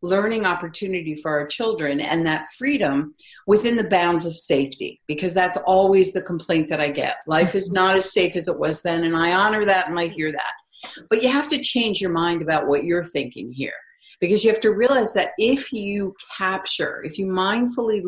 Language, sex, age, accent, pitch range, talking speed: English, female, 50-69, American, 175-225 Hz, 205 wpm